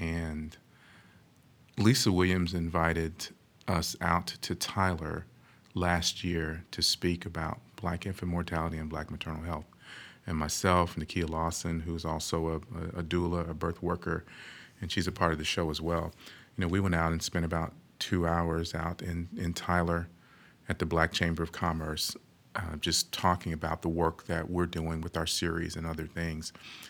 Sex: male